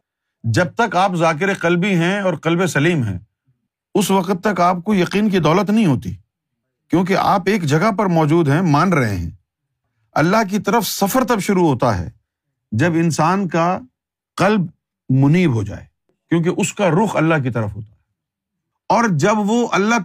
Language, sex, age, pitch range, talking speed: Urdu, male, 50-69, 130-185 Hz, 175 wpm